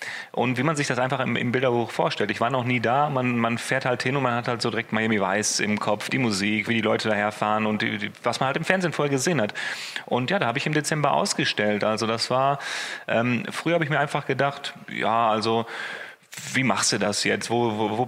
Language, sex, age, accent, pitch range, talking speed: German, male, 30-49, German, 115-140 Hz, 250 wpm